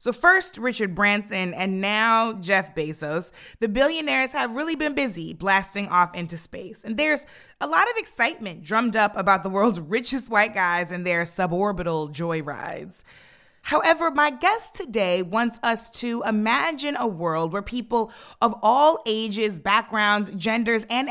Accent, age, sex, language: American, 20-39, female, English